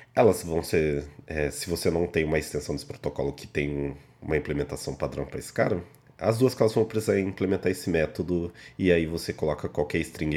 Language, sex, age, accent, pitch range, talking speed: Portuguese, male, 30-49, Brazilian, 80-110 Hz, 195 wpm